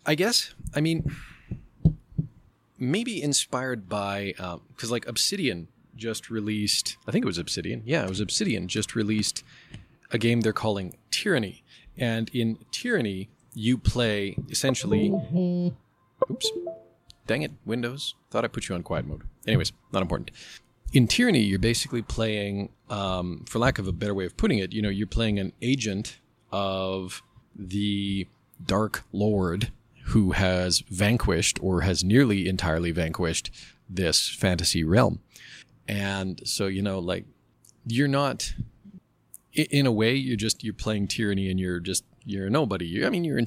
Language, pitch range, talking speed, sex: English, 95-120 Hz, 155 wpm, male